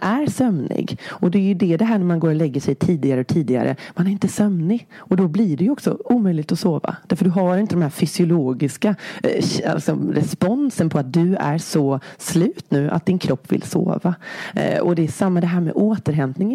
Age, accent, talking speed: 30-49, native, 220 wpm